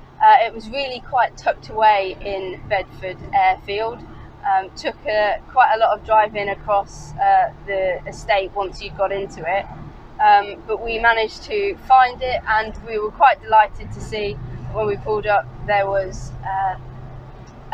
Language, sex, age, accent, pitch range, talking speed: English, female, 20-39, British, 195-245 Hz, 160 wpm